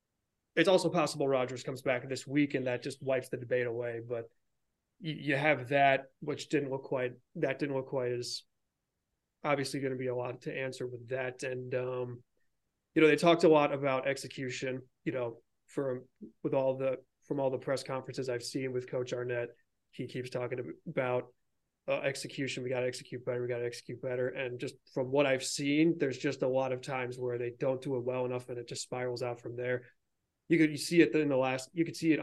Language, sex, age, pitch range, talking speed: English, male, 30-49, 125-140 Hz, 210 wpm